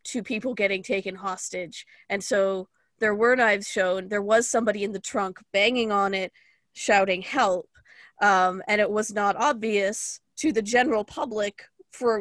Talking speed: 160 wpm